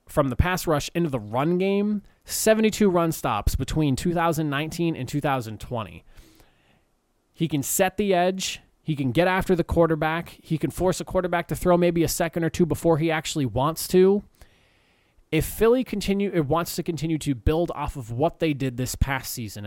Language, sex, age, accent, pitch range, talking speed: English, male, 20-39, American, 125-170 Hz, 185 wpm